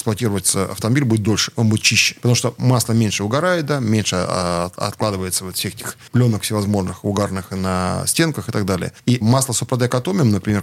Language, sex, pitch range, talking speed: Russian, male, 100-120 Hz, 175 wpm